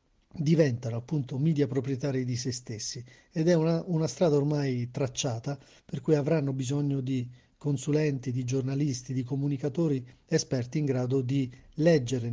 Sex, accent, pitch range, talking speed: male, native, 130-160 Hz, 140 wpm